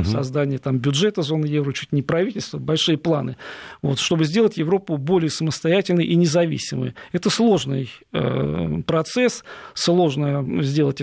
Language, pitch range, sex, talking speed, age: Russian, 145-180 Hz, male, 130 wpm, 40-59